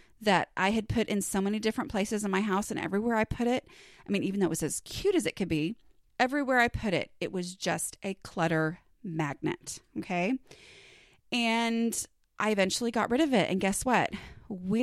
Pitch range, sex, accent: 180-255 Hz, female, American